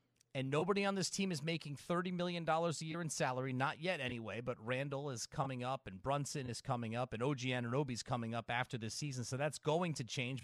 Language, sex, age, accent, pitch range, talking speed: English, male, 30-49, American, 135-170 Hz, 230 wpm